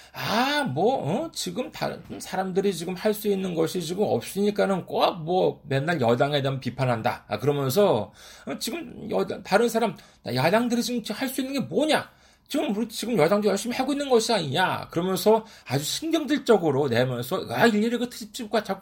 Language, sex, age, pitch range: Korean, male, 40-59, 125-210 Hz